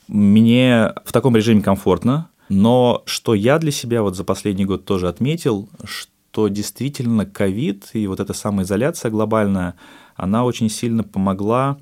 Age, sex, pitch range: 20-39, male, 90-110 Hz